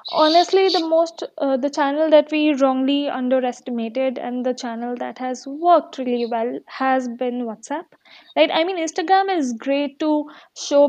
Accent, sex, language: Indian, female, English